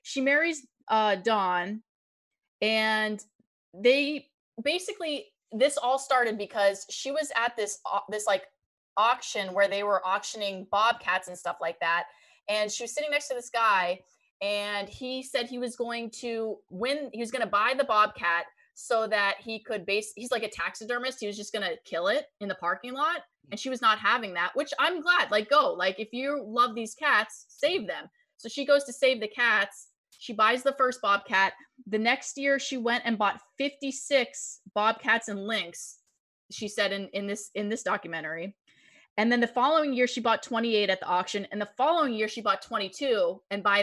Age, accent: 20-39, American